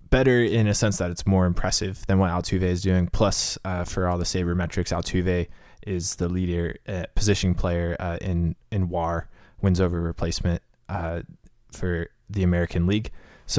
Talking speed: 175 wpm